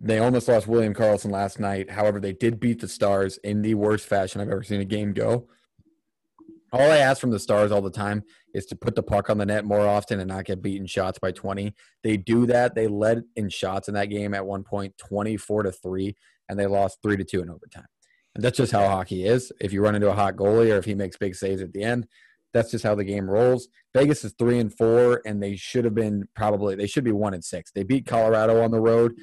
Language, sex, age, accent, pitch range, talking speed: English, male, 30-49, American, 100-115 Hz, 250 wpm